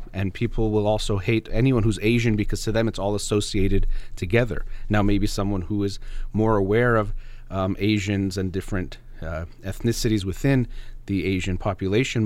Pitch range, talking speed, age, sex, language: 100-120 Hz, 160 wpm, 30-49, male, English